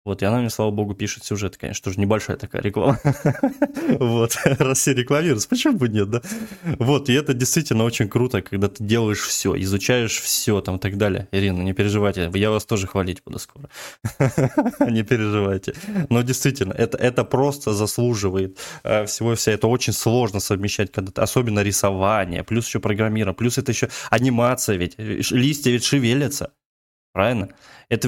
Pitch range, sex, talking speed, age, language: 100-130 Hz, male, 160 wpm, 20-39, Russian